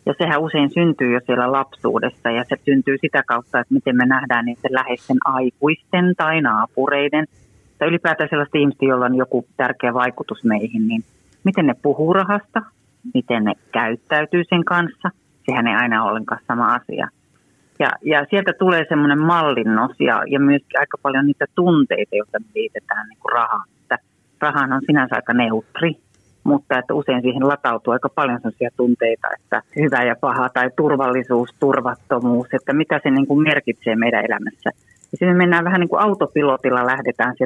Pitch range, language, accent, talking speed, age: 120-155 Hz, Finnish, native, 160 wpm, 30-49